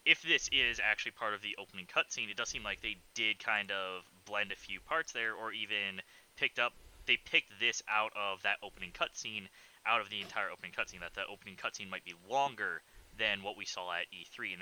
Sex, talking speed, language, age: male, 220 wpm, English, 20-39